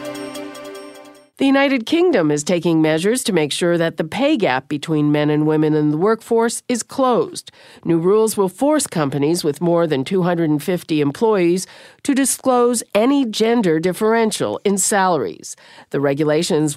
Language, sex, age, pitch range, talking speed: English, female, 50-69, 155-235 Hz, 145 wpm